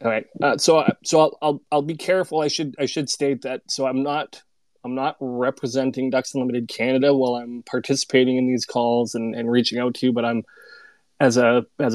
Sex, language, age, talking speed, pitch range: male, English, 20-39, 210 wpm, 120-140 Hz